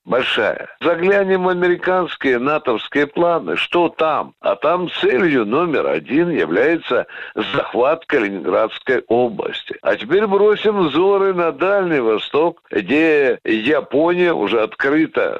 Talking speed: 110 wpm